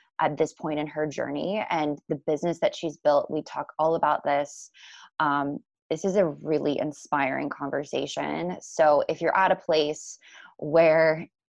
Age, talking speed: 20-39, 160 wpm